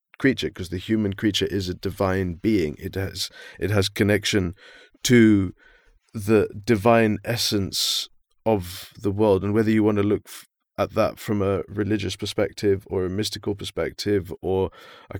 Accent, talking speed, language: British, 155 wpm, English